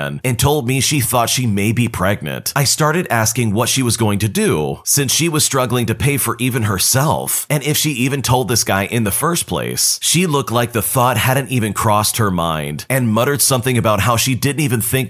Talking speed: 225 wpm